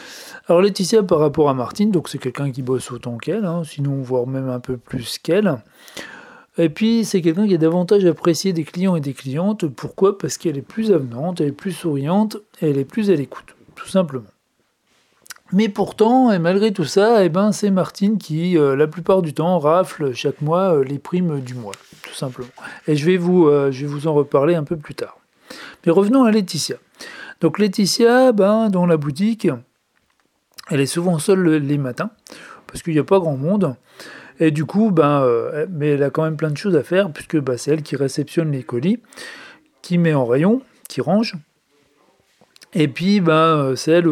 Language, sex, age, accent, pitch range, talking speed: French, male, 40-59, French, 145-190 Hz, 200 wpm